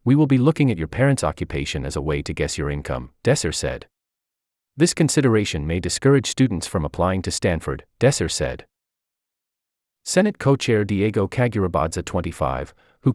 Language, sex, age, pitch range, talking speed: English, male, 30-49, 75-115 Hz, 155 wpm